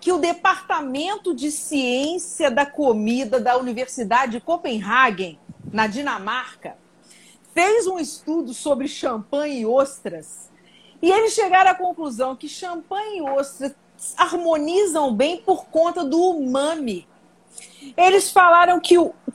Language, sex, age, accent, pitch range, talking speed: Portuguese, female, 40-59, Brazilian, 255-345 Hz, 120 wpm